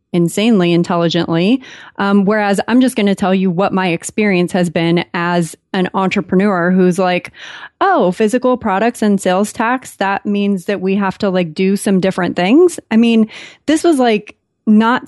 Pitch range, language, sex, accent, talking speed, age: 185-220 Hz, English, female, American, 170 wpm, 30-49